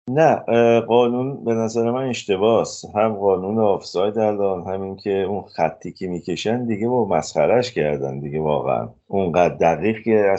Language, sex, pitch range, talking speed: Persian, male, 95-115 Hz, 155 wpm